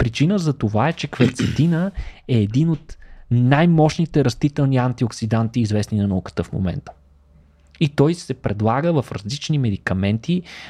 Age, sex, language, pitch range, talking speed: 20-39, male, Bulgarian, 110-145 Hz, 135 wpm